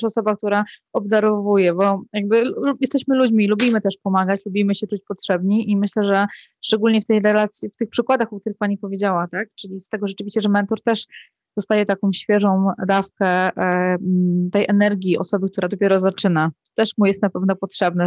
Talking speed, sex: 185 wpm, female